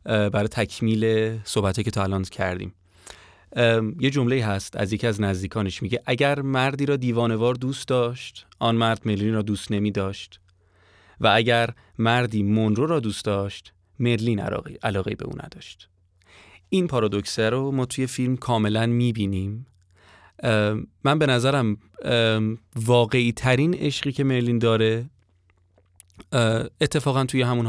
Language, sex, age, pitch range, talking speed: Persian, male, 30-49, 100-125 Hz, 130 wpm